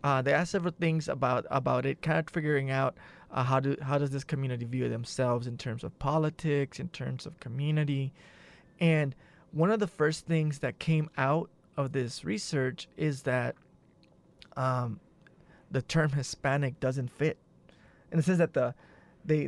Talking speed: 170 wpm